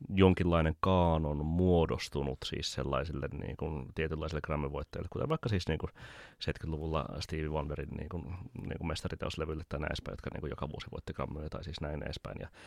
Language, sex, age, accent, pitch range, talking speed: Finnish, male, 30-49, native, 75-90 Hz, 175 wpm